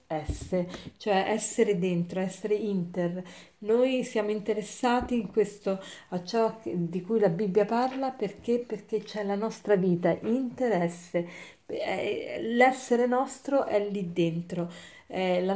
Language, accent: Italian, native